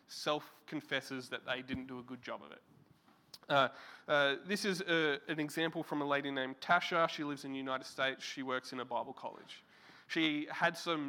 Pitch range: 140-170 Hz